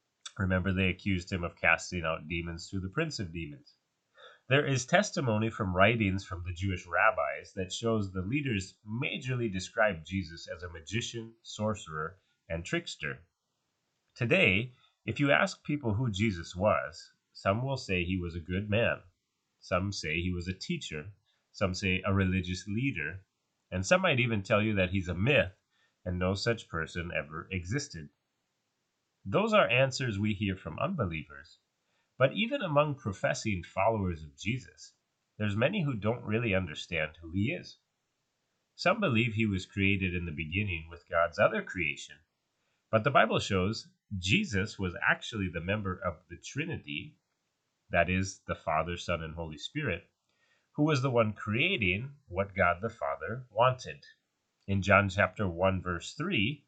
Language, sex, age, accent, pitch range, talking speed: English, male, 30-49, American, 90-115 Hz, 160 wpm